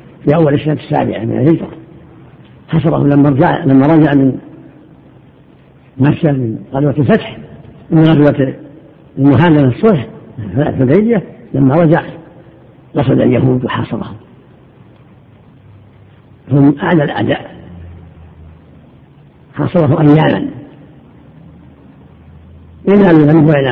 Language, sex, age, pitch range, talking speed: Arabic, female, 60-79, 130-160 Hz, 90 wpm